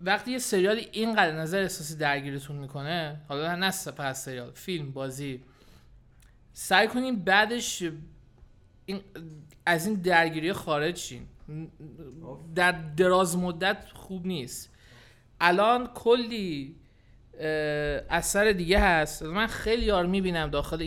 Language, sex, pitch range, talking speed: Persian, male, 150-200 Hz, 105 wpm